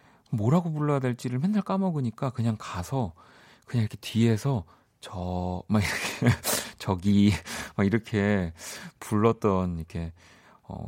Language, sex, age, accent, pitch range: Korean, male, 40-59, native, 95-135 Hz